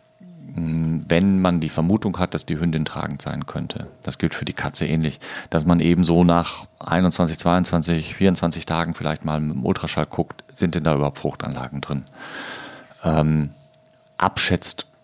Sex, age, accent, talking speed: male, 40-59, German, 155 wpm